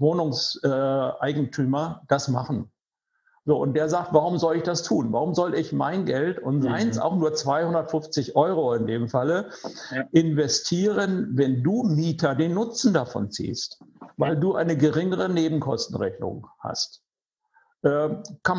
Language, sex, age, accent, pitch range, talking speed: German, male, 60-79, German, 145-170 Hz, 130 wpm